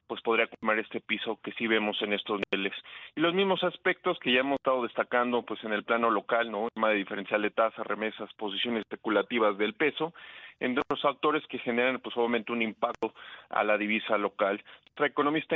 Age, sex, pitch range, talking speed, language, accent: 40-59, male, 110-130 Hz, 200 wpm, Spanish, Mexican